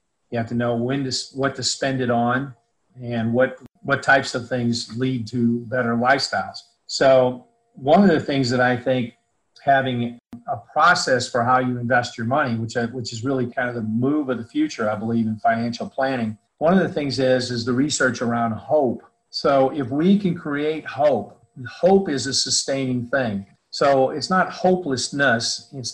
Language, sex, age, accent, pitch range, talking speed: English, male, 40-59, American, 120-140 Hz, 185 wpm